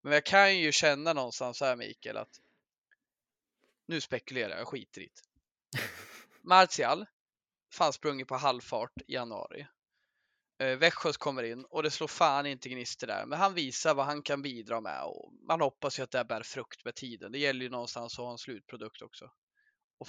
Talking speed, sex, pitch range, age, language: 180 wpm, male, 130-185 Hz, 20-39, Swedish